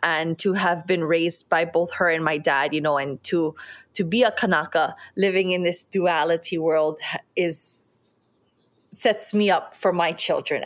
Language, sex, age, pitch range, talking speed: English, female, 20-39, 165-195 Hz, 175 wpm